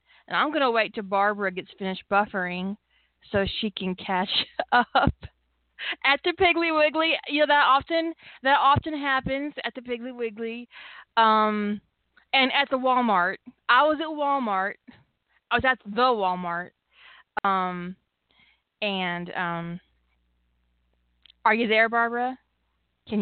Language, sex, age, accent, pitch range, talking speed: English, female, 20-39, American, 190-255 Hz, 130 wpm